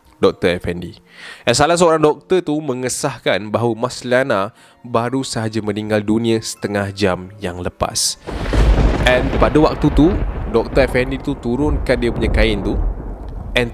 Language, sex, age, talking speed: Malay, male, 20-39, 130 wpm